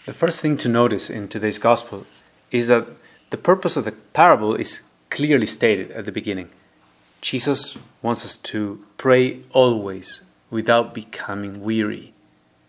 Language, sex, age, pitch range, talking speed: English, male, 30-49, 105-130 Hz, 140 wpm